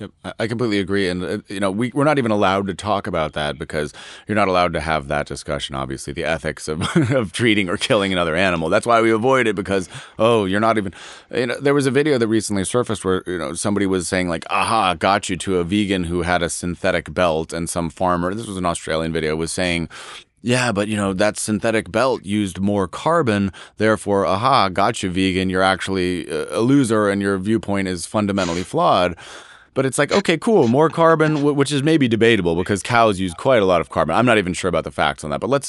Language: English